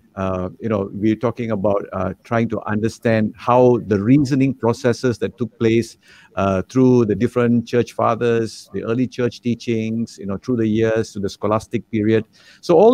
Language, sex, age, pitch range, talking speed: English, male, 50-69, 100-120 Hz, 175 wpm